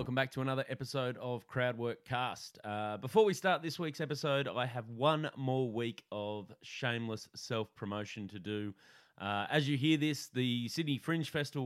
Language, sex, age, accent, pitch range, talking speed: English, male, 30-49, Australian, 100-130 Hz, 175 wpm